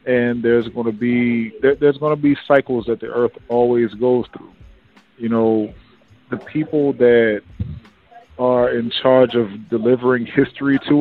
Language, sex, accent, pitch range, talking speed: English, male, American, 115-135 Hz, 155 wpm